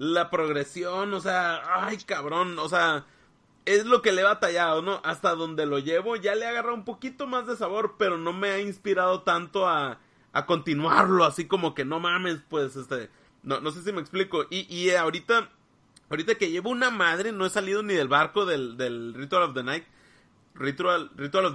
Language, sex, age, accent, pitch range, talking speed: Spanish, male, 30-49, Mexican, 155-205 Hz, 205 wpm